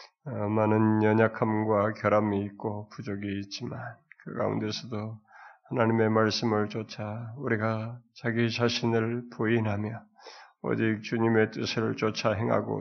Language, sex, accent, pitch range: Korean, male, native, 110-120 Hz